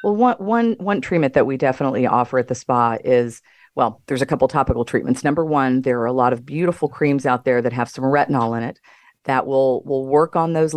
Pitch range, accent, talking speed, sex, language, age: 125-145 Hz, American, 240 wpm, female, English, 40-59